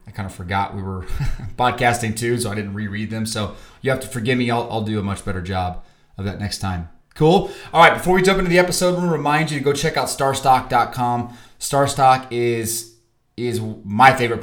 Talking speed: 225 wpm